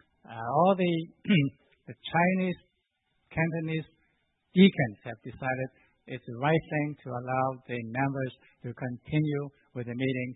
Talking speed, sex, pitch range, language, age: 125 wpm, male, 125-160 Hz, English, 60-79